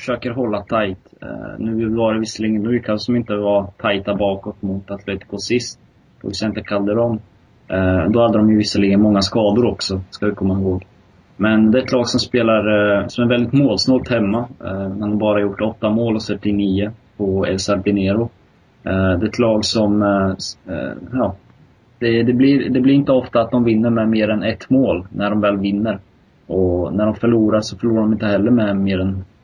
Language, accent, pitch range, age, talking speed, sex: Swedish, native, 100-115 Hz, 20-39, 205 wpm, male